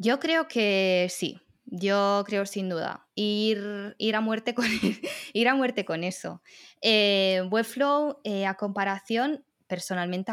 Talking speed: 140 wpm